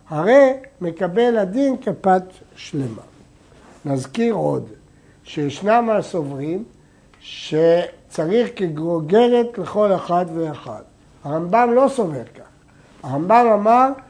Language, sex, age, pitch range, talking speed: Hebrew, male, 60-79, 155-215 Hz, 85 wpm